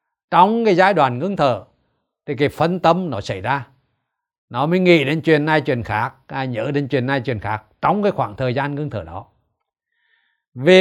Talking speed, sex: 200 wpm, male